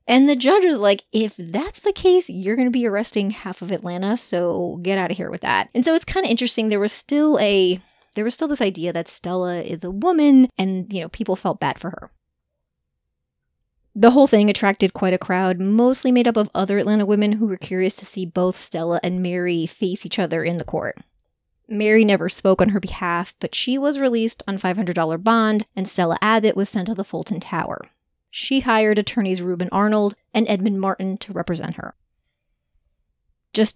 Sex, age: female, 30-49